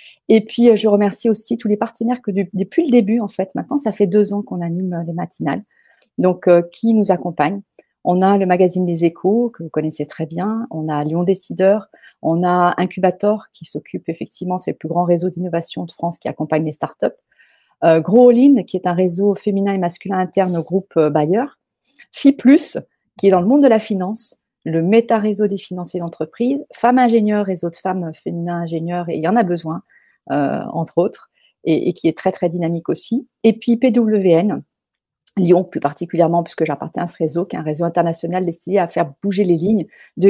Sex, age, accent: female, 30-49, French